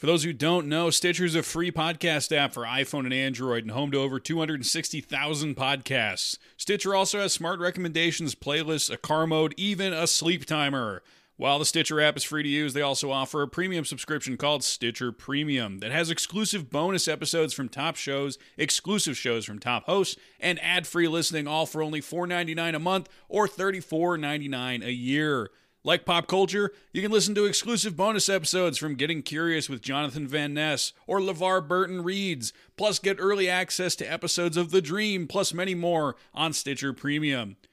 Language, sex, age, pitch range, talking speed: English, male, 30-49, 130-175 Hz, 180 wpm